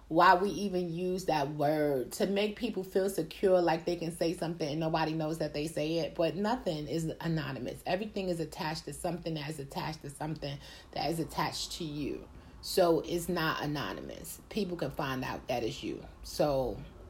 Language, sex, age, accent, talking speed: English, female, 30-49, American, 190 wpm